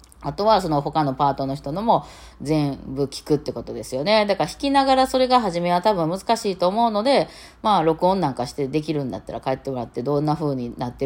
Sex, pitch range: female, 140-210 Hz